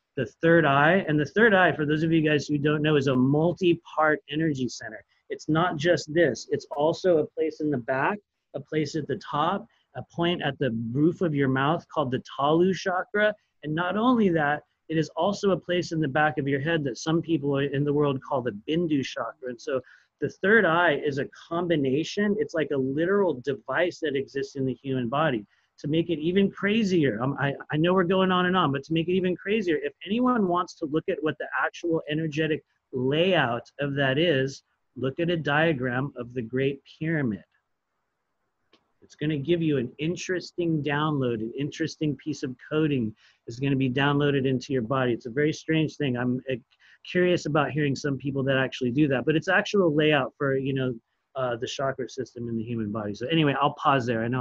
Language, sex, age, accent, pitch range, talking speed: English, male, 30-49, American, 135-170 Hz, 215 wpm